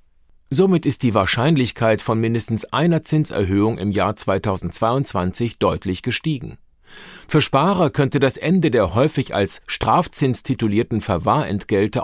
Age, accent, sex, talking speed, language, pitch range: 50-69, German, male, 120 wpm, German, 95-140 Hz